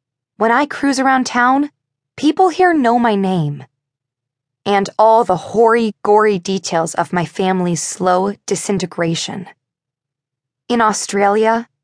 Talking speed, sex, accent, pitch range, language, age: 115 wpm, female, American, 145-225 Hz, English, 20-39